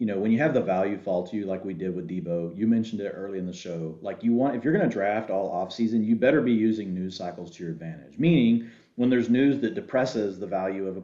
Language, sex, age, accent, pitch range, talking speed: English, male, 40-59, American, 100-130 Hz, 285 wpm